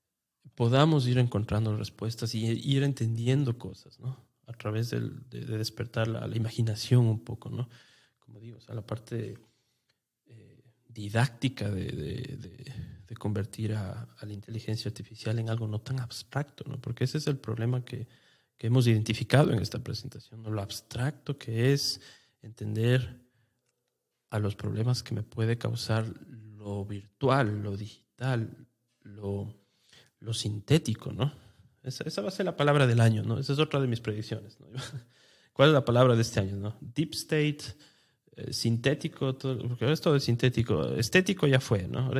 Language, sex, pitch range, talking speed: English, male, 110-130 Hz, 160 wpm